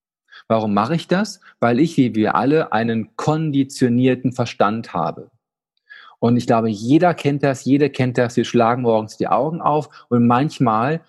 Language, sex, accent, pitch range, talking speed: German, male, German, 115-150 Hz, 160 wpm